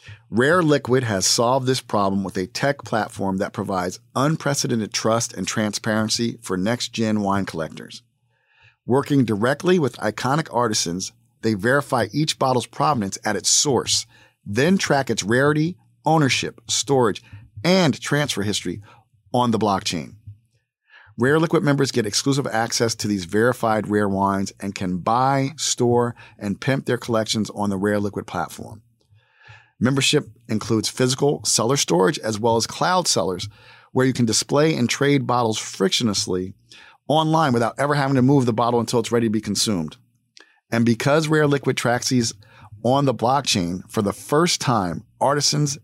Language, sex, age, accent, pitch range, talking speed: English, male, 50-69, American, 105-135 Hz, 150 wpm